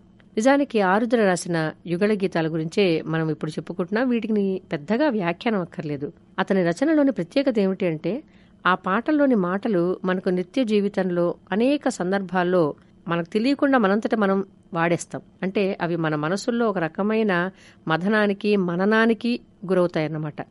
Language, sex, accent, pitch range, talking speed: Telugu, female, native, 165-205 Hz, 115 wpm